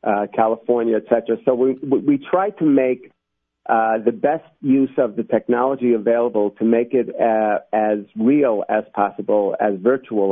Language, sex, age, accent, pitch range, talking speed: English, male, 50-69, American, 110-130 Hz, 165 wpm